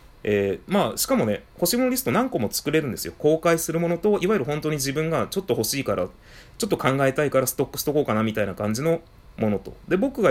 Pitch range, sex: 110-170 Hz, male